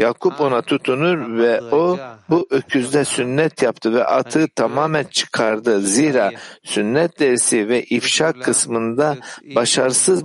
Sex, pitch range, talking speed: male, 115-155 Hz, 115 wpm